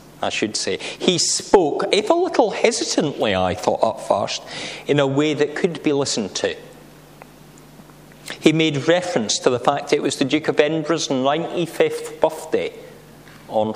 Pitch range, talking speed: 120-170 Hz, 160 wpm